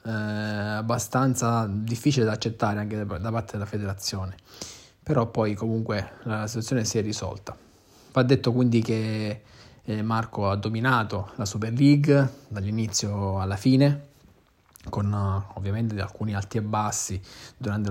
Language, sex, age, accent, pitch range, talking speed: Italian, male, 20-39, native, 105-120 Hz, 125 wpm